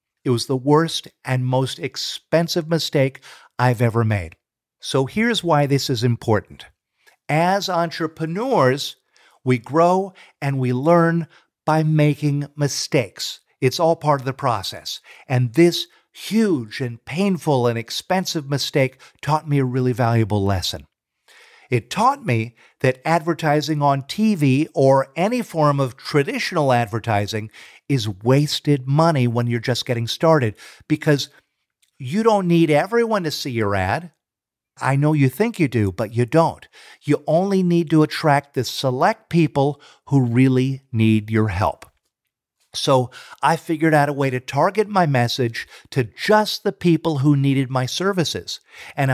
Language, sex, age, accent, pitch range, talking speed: English, male, 50-69, American, 125-165 Hz, 145 wpm